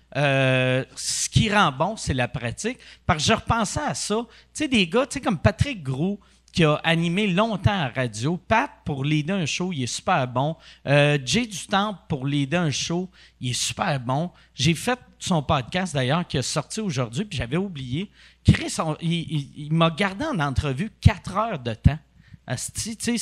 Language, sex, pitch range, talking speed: French, male, 140-195 Hz, 195 wpm